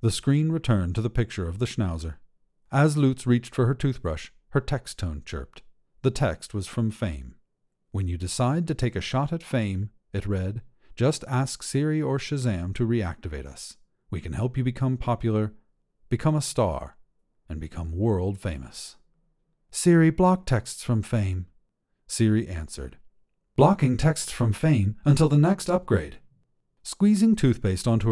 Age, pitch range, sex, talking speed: 50-69, 95-135 Hz, male, 160 wpm